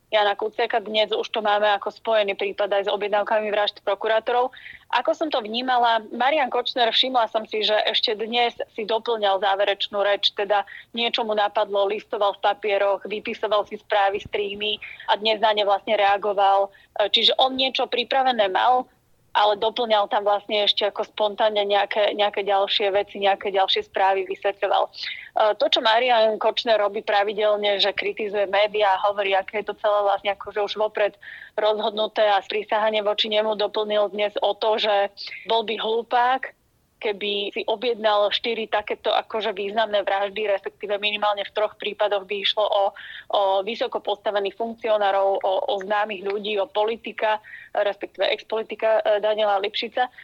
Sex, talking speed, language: female, 155 wpm, Slovak